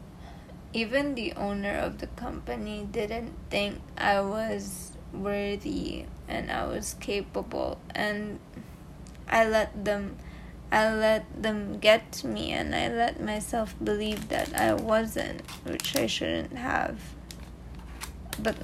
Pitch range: 190-220 Hz